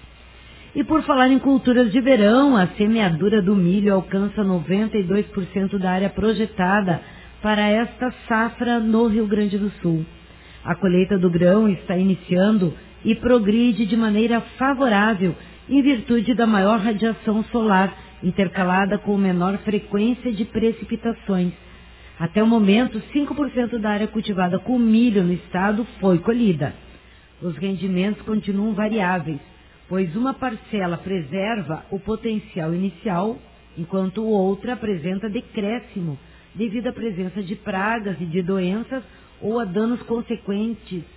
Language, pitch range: Portuguese, 185-225 Hz